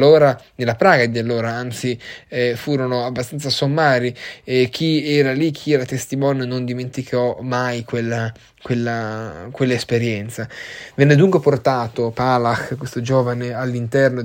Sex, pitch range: male, 115-135 Hz